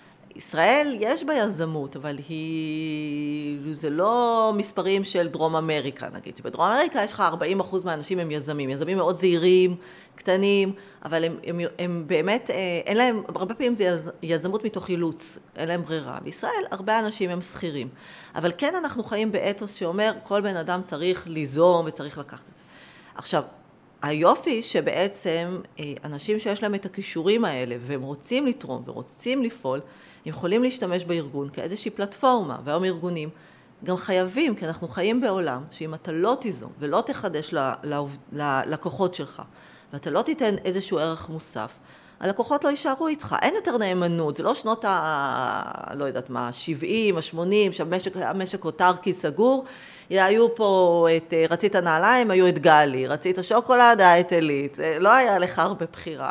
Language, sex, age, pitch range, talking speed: Hebrew, female, 30-49, 160-210 Hz, 150 wpm